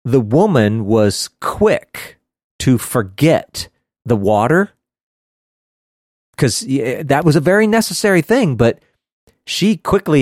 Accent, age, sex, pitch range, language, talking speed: American, 40-59, male, 110-155 Hz, English, 105 wpm